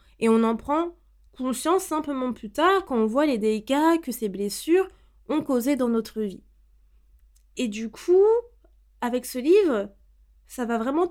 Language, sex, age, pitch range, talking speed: French, female, 20-39, 210-270 Hz, 160 wpm